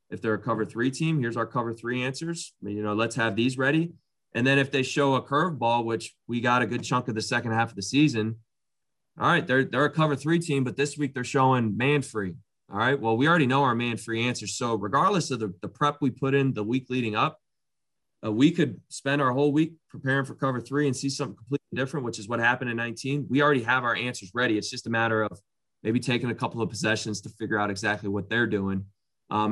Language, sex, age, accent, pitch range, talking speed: English, male, 20-39, American, 110-135 Hz, 250 wpm